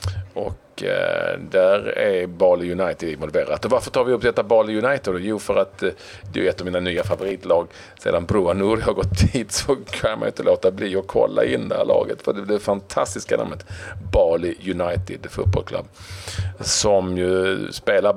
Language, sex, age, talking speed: Swedish, male, 40-59, 170 wpm